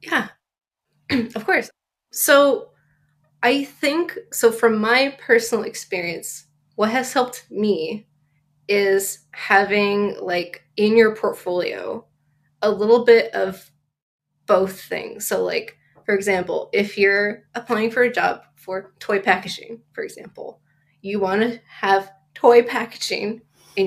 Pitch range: 175-235 Hz